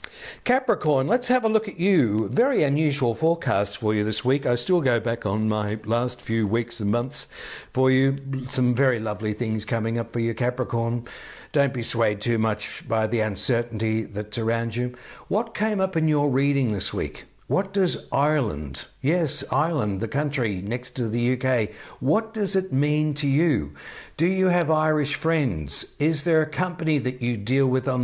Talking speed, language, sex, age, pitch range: 185 wpm, English, male, 60-79, 105-145 Hz